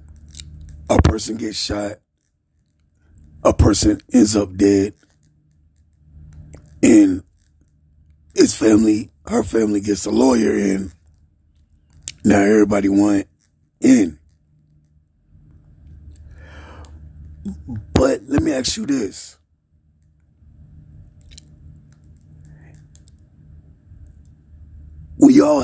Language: Czech